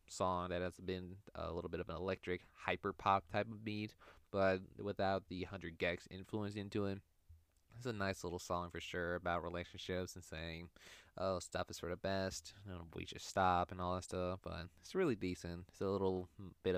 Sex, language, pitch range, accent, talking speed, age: male, English, 90-100 Hz, American, 195 wpm, 20-39